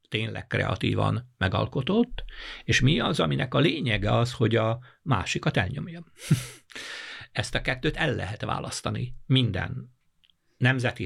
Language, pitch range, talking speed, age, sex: Hungarian, 105-130 Hz, 125 wpm, 60-79, male